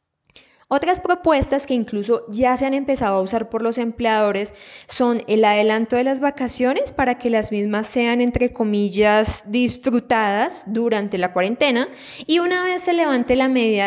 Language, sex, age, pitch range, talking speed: Spanish, female, 10-29, 215-270 Hz, 160 wpm